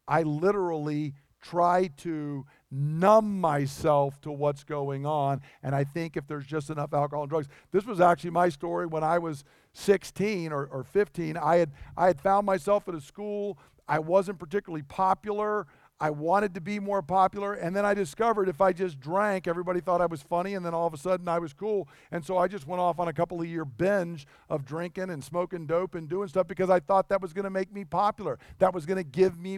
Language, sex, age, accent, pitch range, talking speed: English, male, 50-69, American, 155-195 Hz, 215 wpm